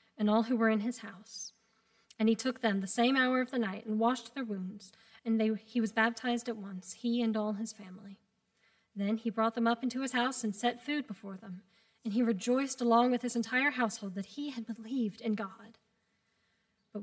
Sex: female